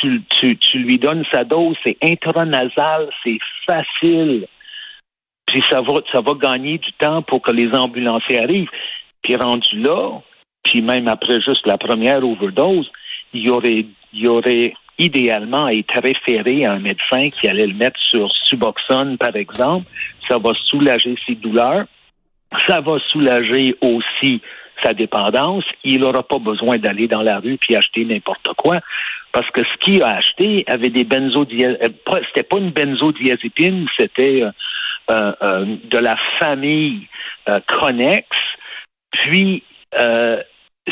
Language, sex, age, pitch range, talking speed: French, male, 60-79, 120-155 Hz, 145 wpm